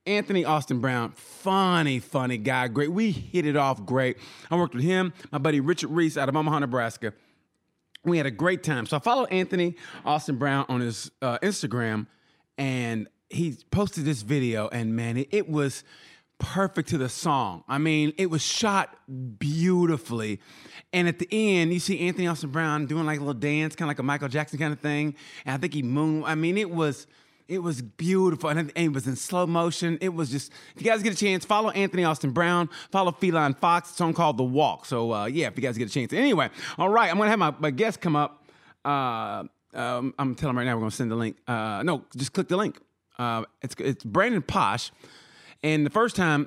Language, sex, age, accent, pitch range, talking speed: English, male, 30-49, American, 125-175 Hz, 225 wpm